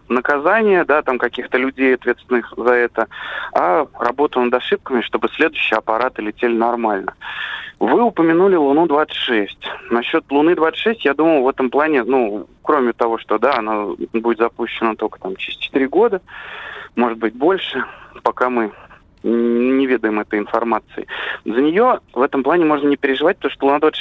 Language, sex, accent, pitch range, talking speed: Russian, male, native, 115-150 Hz, 150 wpm